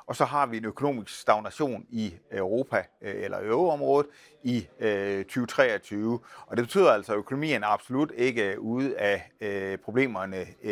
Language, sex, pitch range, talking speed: Danish, male, 100-130 Hz, 140 wpm